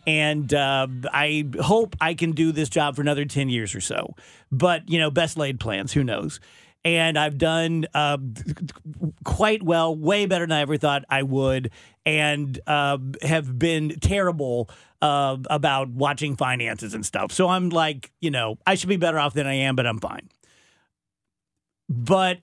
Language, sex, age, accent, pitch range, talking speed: English, male, 40-59, American, 140-180 Hz, 175 wpm